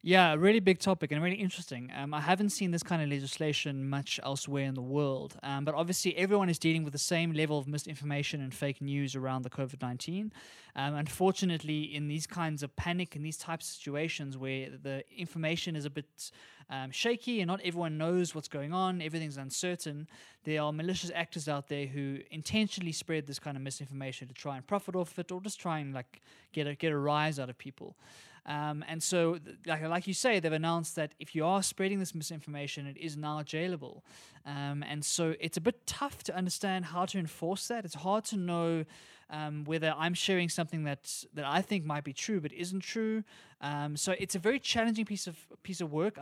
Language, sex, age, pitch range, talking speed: English, male, 20-39, 145-180 Hz, 205 wpm